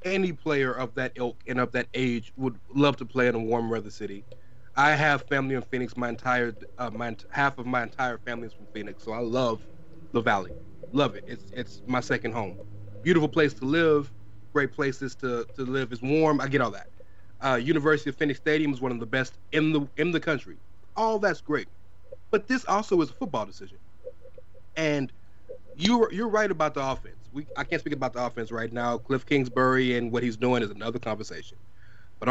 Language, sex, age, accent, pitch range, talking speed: English, male, 30-49, American, 115-165 Hz, 210 wpm